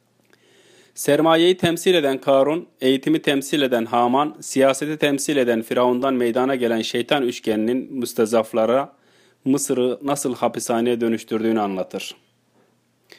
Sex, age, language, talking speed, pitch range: male, 30-49, Turkish, 100 wpm, 125-155 Hz